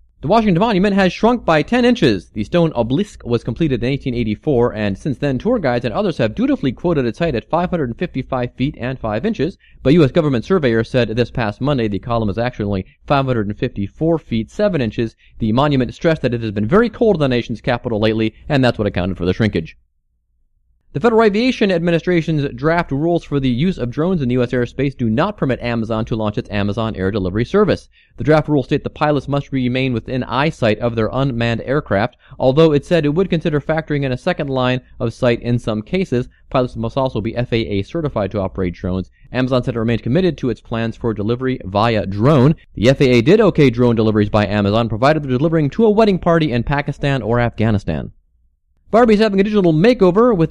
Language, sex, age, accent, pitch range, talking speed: English, male, 30-49, American, 110-155 Hz, 205 wpm